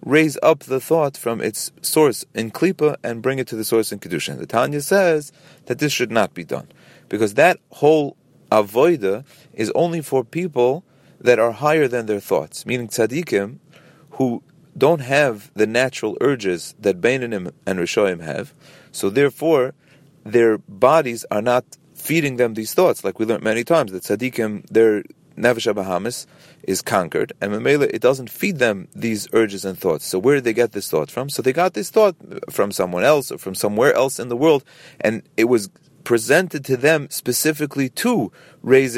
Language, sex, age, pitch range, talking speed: English, male, 40-59, 115-155 Hz, 180 wpm